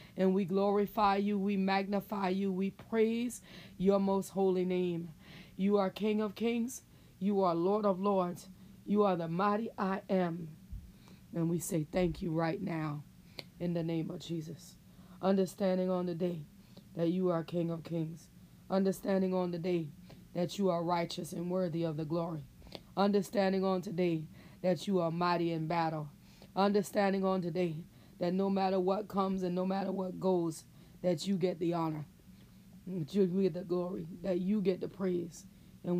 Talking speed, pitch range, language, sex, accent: 170 wpm, 170-195 Hz, English, female, American